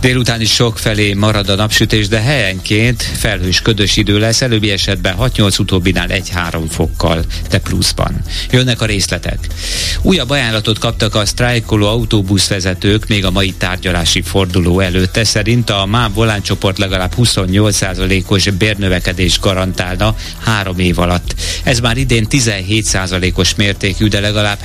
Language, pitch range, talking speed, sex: Hungarian, 90-110 Hz, 125 wpm, male